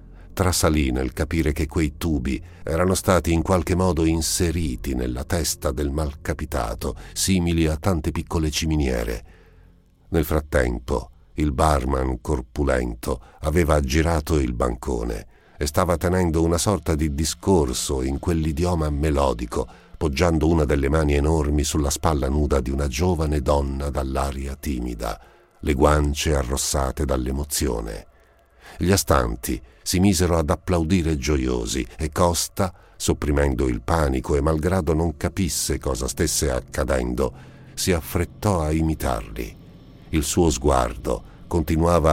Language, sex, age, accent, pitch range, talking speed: Italian, male, 50-69, native, 70-85 Hz, 120 wpm